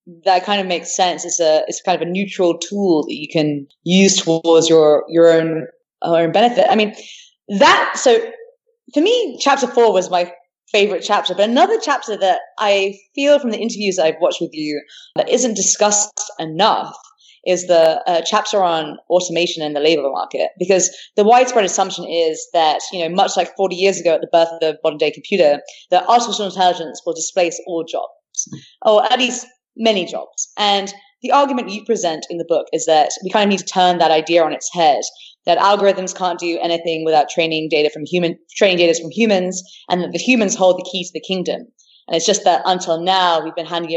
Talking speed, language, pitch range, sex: 205 wpm, English, 165-210 Hz, female